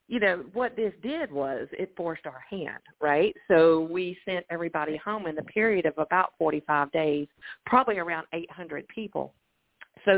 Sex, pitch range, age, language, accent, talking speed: female, 160-210 Hz, 40-59, English, American, 165 wpm